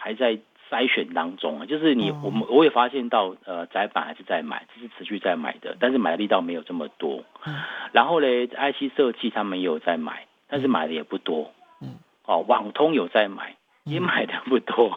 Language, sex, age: Chinese, male, 50-69